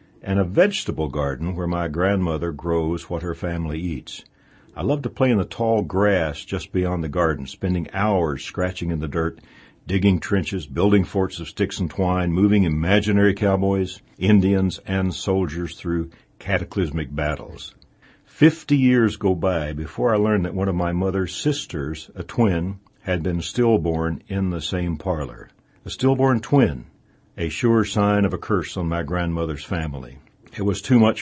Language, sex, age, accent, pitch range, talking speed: English, male, 60-79, American, 85-100 Hz, 165 wpm